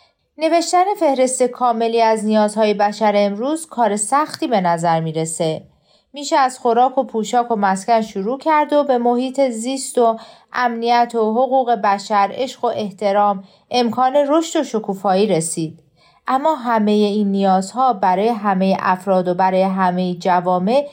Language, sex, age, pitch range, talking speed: Persian, female, 40-59, 190-260 Hz, 140 wpm